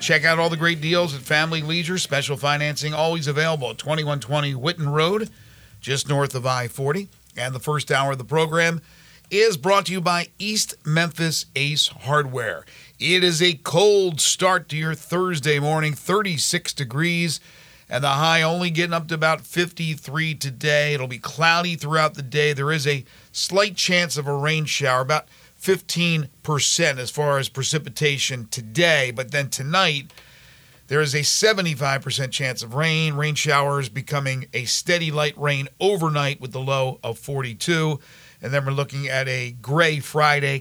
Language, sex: English, male